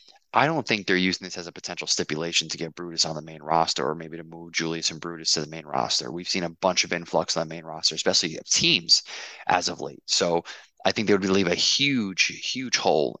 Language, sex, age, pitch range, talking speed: English, male, 20-39, 85-95 Hz, 245 wpm